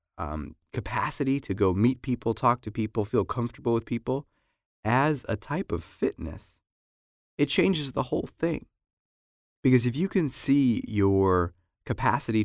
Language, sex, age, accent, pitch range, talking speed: English, male, 20-39, American, 100-125 Hz, 145 wpm